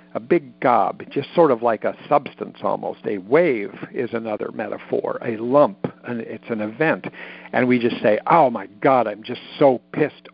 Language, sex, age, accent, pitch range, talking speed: English, male, 60-79, American, 115-135 Hz, 185 wpm